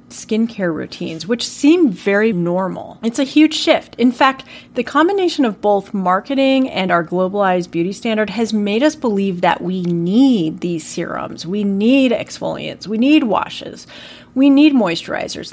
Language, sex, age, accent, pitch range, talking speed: English, female, 30-49, American, 185-255 Hz, 155 wpm